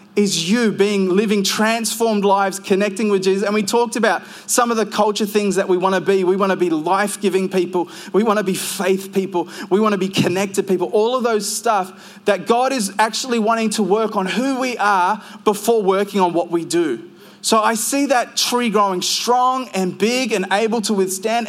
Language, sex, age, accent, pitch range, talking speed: English, male, 20-39, Australian, 190-220 Hz, 210 wpm